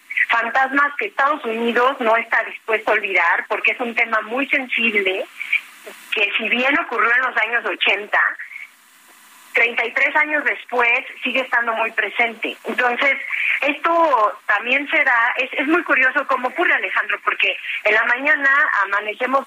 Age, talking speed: 30-49, 140 wpm